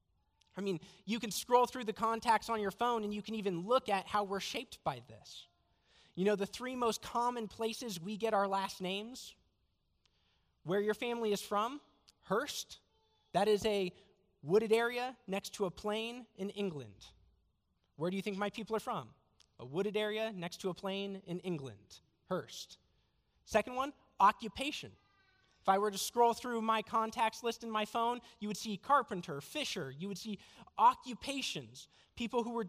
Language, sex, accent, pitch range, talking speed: English, male, American, 160-225 Hz, 175 wpm